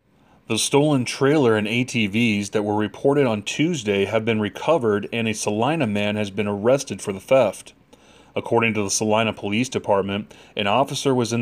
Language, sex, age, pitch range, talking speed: English, male, 30-49, 105-130 Hz, 175 wpm